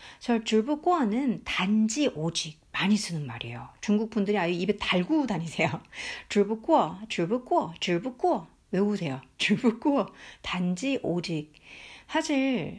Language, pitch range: Korean, 175-265 Hz